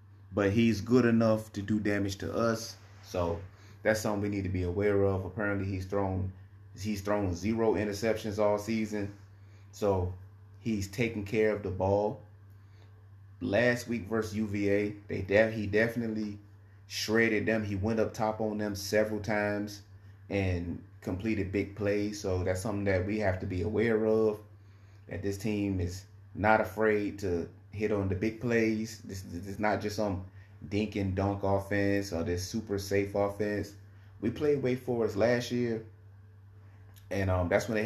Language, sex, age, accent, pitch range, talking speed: English, male, 30-49, American, 100-110 Hz, 165 wpm